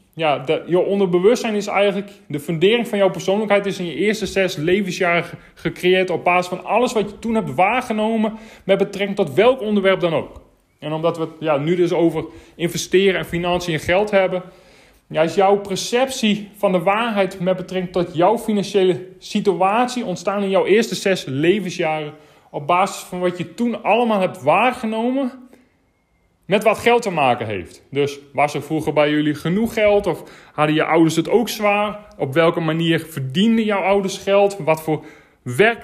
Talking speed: 175 wpm